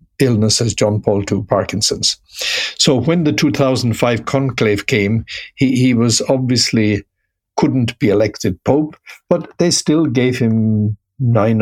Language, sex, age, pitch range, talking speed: English, male, 60-79, 110-140 Hz, 135 wpm